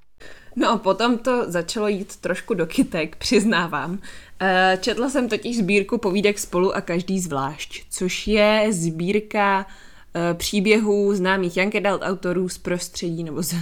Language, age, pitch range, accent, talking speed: Czech, 20-39, 170-200 Hz, native, 125 wpm